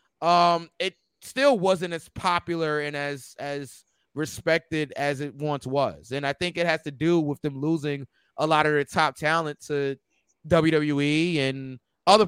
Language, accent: English, American